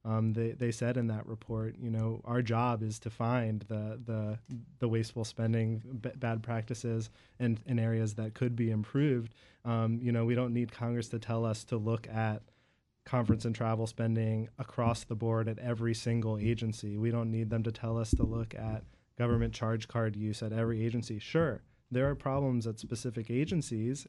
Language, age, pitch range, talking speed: English, 20-39, 110-120 Hz, 190 wpm